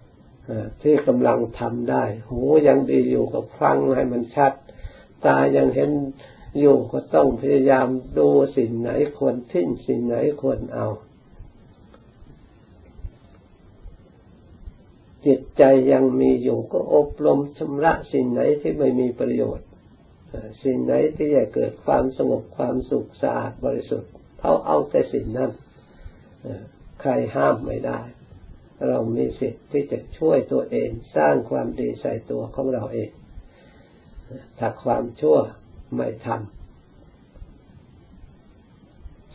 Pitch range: 105-135 Hz